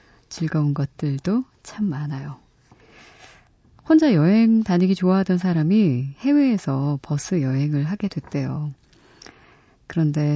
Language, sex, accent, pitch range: Korean, female, native, 145-205 Hz